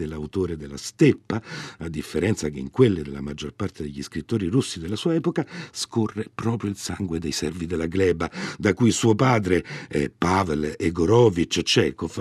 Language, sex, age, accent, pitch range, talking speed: Italian, male, 60-79, native, 85-125 Hz, 160 wpm